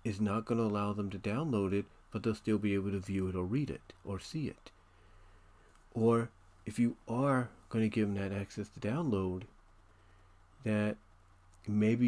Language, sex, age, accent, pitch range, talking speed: English, male, 40-59, American, 95-110 Hz, 185 wpm